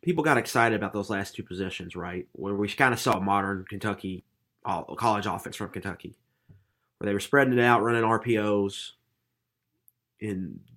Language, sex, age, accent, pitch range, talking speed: English, male, 30-49, American, 100-115 Hz, 165 wpm